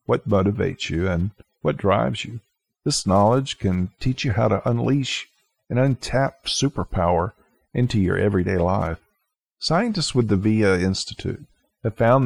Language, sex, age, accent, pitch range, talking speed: English, male, 50-69, American, 100-130 Hz, 140 wpm